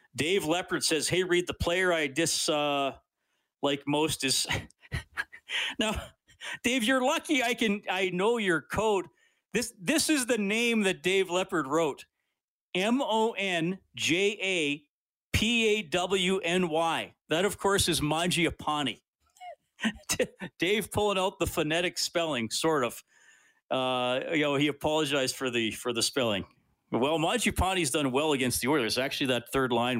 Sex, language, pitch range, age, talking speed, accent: male, English, 130-195 Hz, 40-59, 150 wpm, American